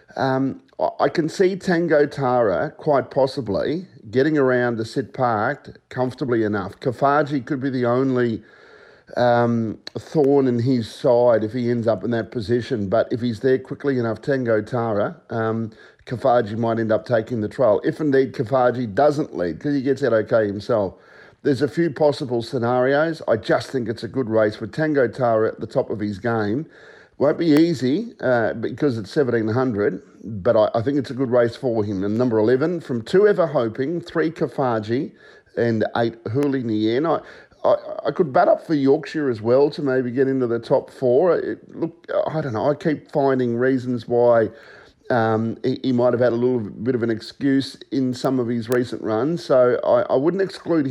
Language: English